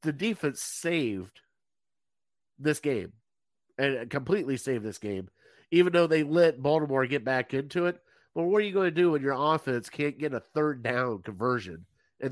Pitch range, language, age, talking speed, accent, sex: 125-160 Hz, English, 50-69, 175 wpm, American, male